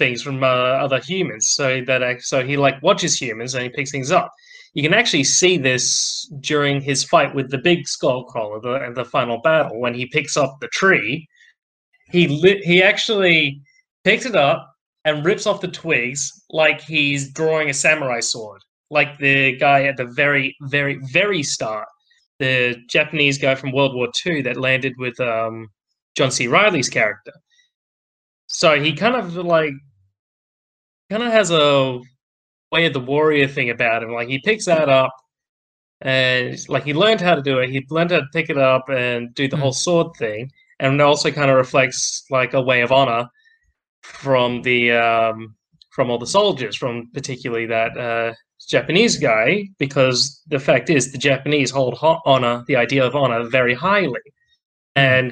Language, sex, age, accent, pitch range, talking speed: English, male, 20-39, Australian, 125-160 Hz, 175 wpm